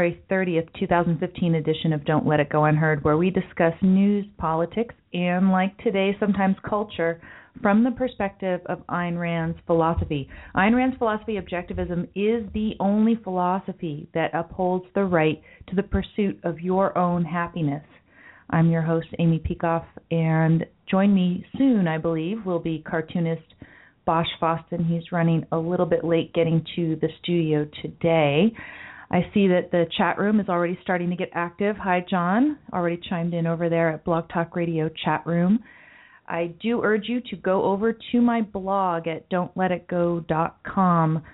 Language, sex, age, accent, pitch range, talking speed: English, female, 40-59, American, 165-195 Hz, 160 wpm